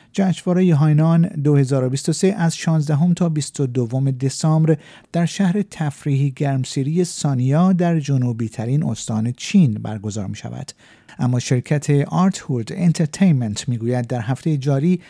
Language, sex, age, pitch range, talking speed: Persian, male, 50-69, 125-175 Hz, 120 wpm